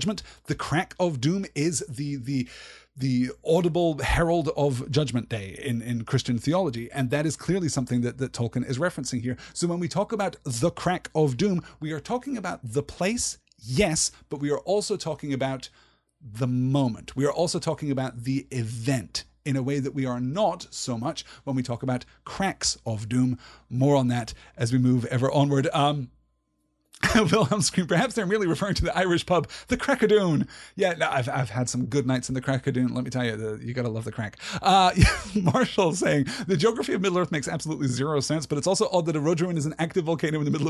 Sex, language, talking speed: male, English, 210 wpm